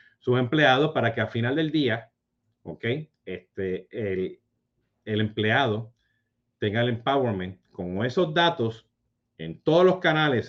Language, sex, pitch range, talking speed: Spanish, male, 110-140 Hz, 130 wpm